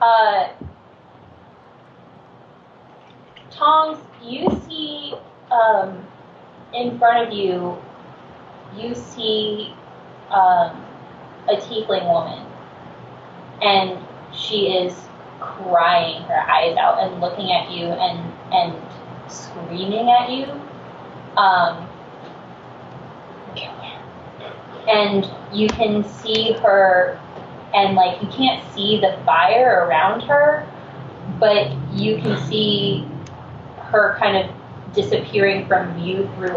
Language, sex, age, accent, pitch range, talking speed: English, female, 20-39, American, 180-230 Hz, 95 wpm